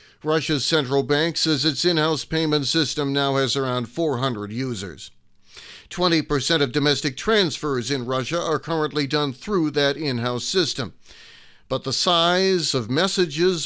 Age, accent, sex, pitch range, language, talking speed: 40-59, American, male, 130-160 Hz, English, 135 wpm